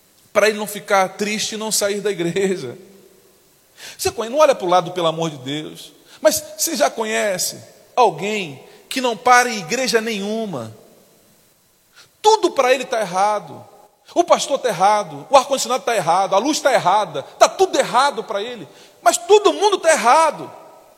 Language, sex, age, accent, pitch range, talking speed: Portuguese, male, 40-59, Brazilian, 195-290 Hz, 170 wpm